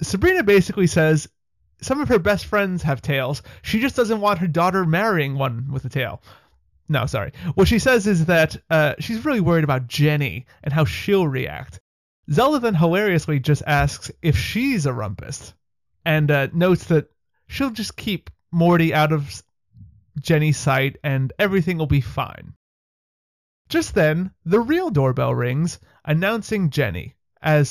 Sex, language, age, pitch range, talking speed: male, English, 30-49, 135-180 Hz, 160 wpm